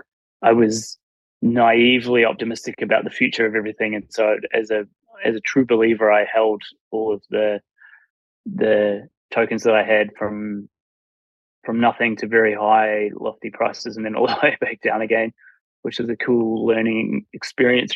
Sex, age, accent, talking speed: male, 20-39, Australian, 165 wpm